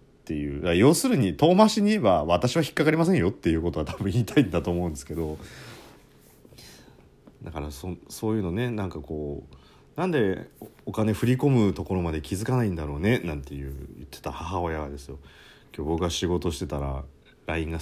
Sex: male